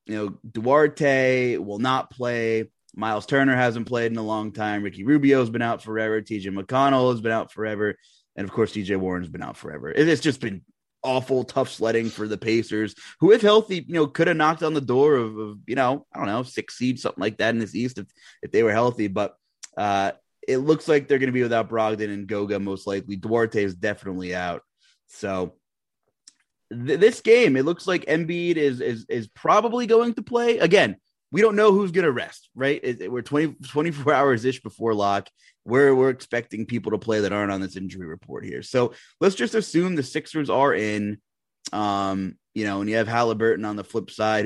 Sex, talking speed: male, 210 wpm